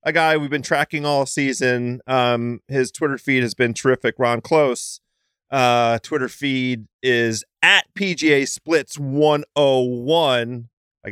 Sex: male